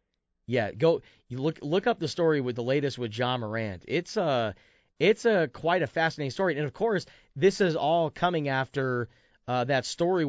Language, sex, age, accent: English, male, 30-49, American